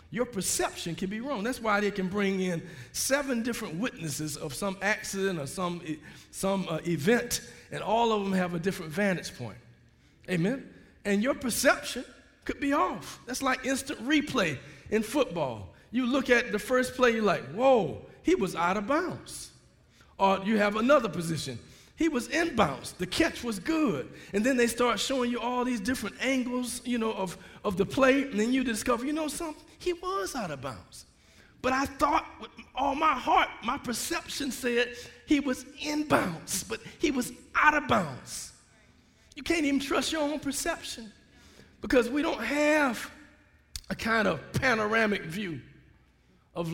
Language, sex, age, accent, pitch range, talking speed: English, male, 40-59, American, 190-275 Hz, 175 wpm